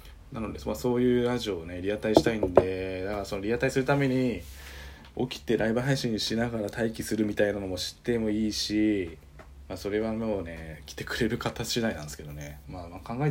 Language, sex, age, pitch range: Japanese, male, 20-39, 75-110 Hz